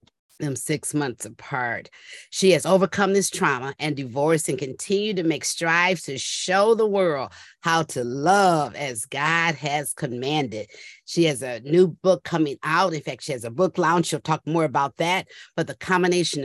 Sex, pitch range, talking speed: female, 145-180 Hz, 180 wpm